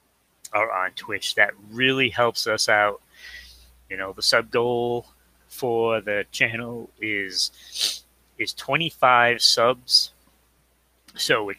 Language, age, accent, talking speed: English, 30-49, American, 115 wpm